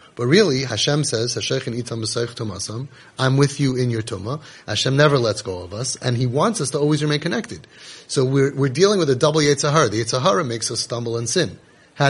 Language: English